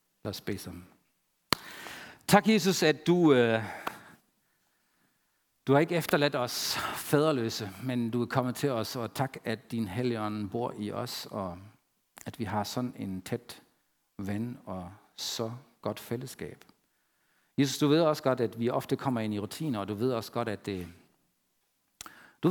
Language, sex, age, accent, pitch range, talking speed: Danish, male, 50-69, German, 105-130 Hz, 155 wpm